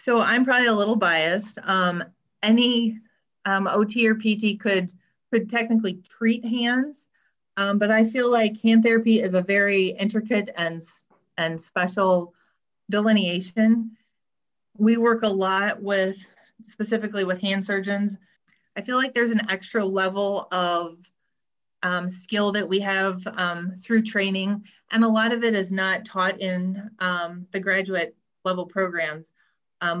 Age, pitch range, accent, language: 30-49, 180-215 Hz, American, English